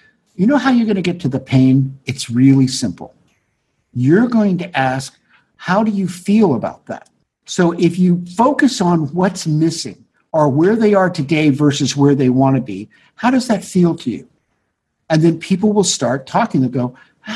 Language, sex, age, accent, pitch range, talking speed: English, male, 60-79, American, 135-190 Hz, 185 wpm